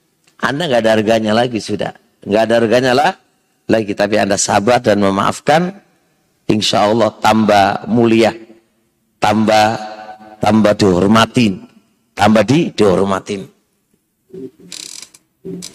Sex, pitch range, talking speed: male, 110-170 Hz, 100 wpm